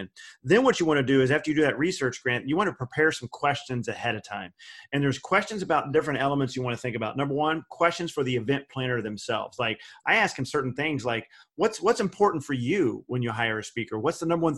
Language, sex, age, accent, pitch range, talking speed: English, male, 30-49, American, 125-155 Hz, 255 wpm